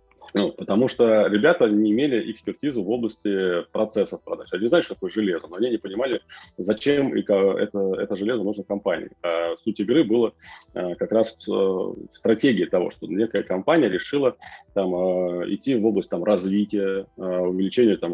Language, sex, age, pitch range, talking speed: Russian, male, 20-39, 90-105 Hz, 140 wpm